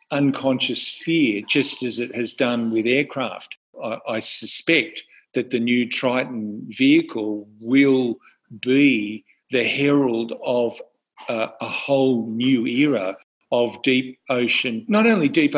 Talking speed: 125 wpm